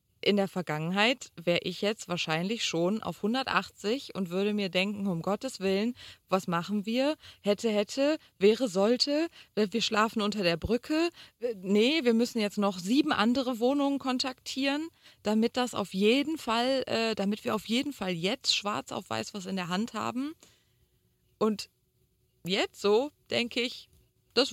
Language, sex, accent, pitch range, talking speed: German, female, German, 185-245 Hz, 155 wpm